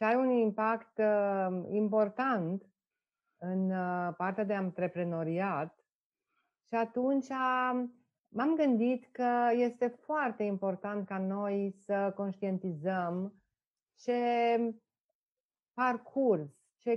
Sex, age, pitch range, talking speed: female, 30-49, 185-255 Hz, 85 wpm